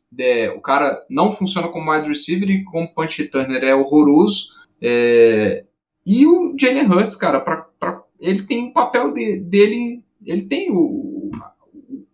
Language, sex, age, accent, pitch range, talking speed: Portuguese, male, 10-29, Brazilian, 140-200 Hz, 160 wpm